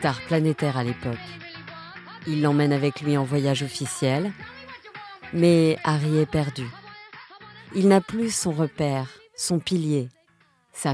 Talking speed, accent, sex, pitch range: 125 wpm, French, female, 135-185 Hz